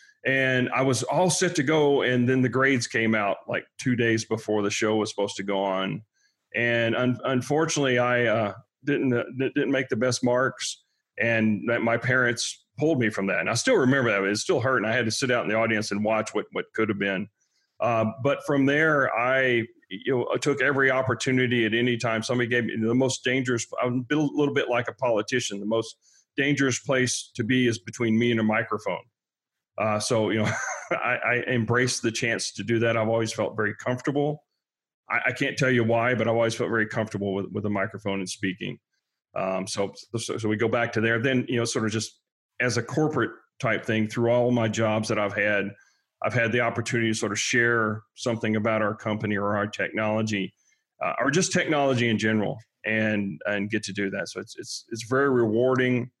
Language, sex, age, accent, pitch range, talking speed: English, male, 40-59, American, 110-130 Hz, 215 wpm